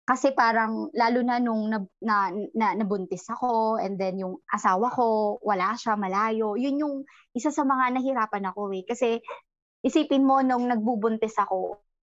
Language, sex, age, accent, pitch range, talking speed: Filipino, male, 20-39, native, 200-260 Hz, 160 wpm